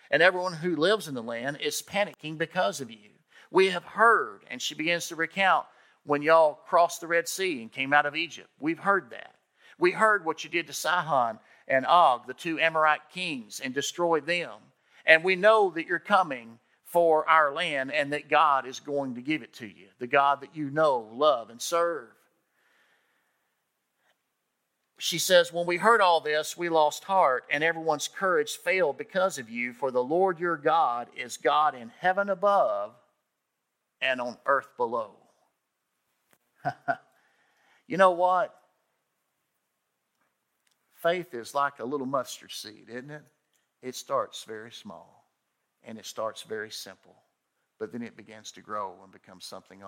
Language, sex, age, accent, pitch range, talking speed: English, male, 50-69, American, 140-180 Hz, 165 wpm